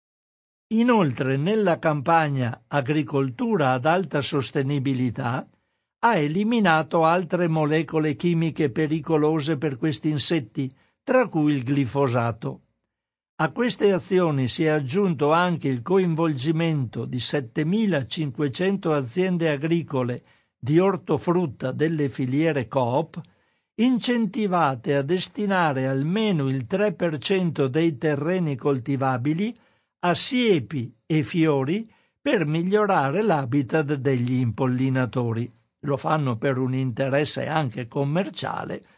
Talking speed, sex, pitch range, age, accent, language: 95 wpm, male, 135-175 Hz, 60-79, native, Italian